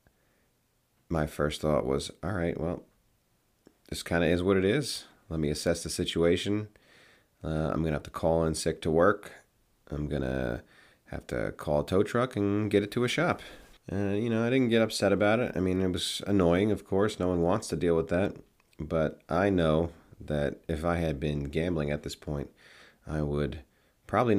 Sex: male